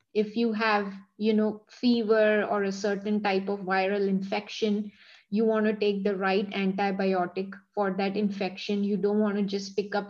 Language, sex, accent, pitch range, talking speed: English, female, Indian, 195-220 Hz, 180 wpm